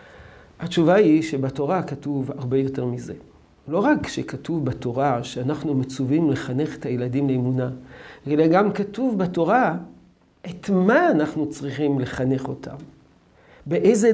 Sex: male